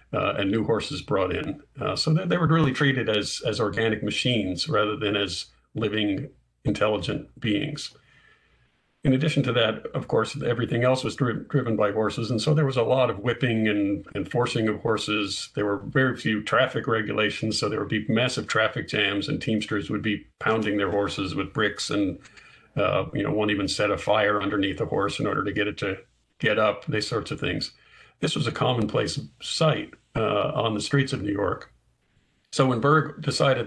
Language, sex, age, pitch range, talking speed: English, male, 50-69, 105-140 Hz, 200 wpm